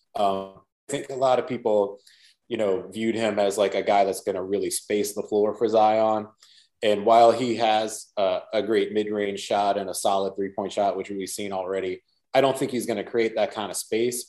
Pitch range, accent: 95-110 Hz, American